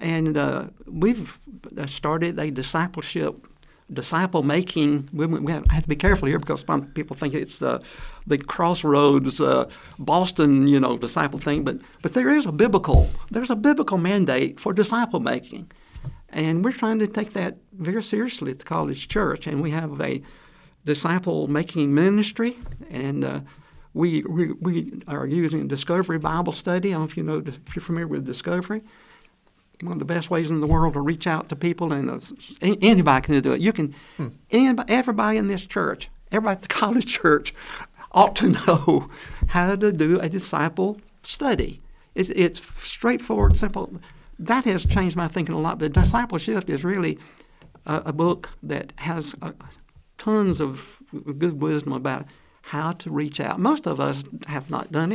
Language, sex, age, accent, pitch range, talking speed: English, male, 60-79, American, 150-200 Hz, 175 wpm